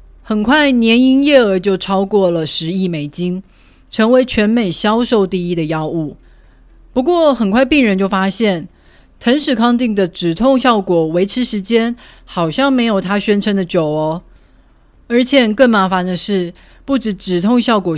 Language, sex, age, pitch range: Chinese, female, 30-49, 175-235 Hz